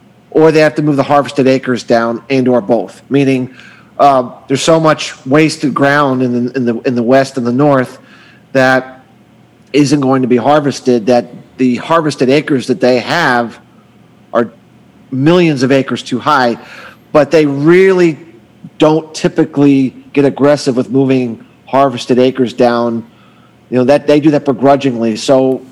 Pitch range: 130-150 Hz